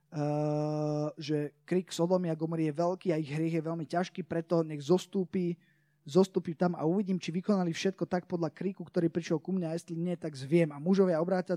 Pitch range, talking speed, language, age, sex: 160-190 Hz, 190 wpm, Slovak, 20-39, male